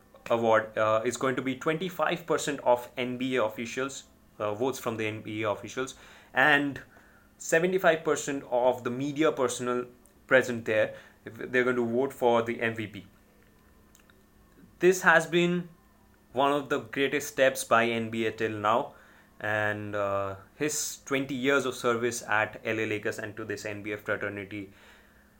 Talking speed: 135 wpm